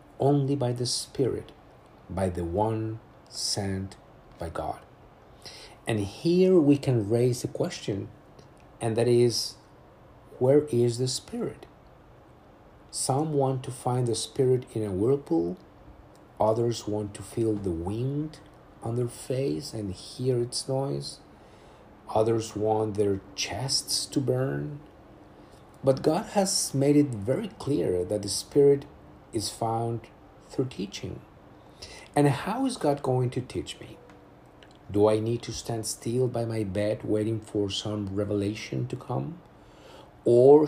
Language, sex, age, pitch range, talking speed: English, male, 50-69, 105-130 Hz, 135 wpm